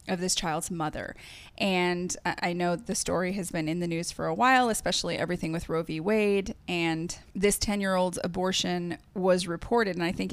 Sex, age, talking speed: female, 20-39, 185 wpm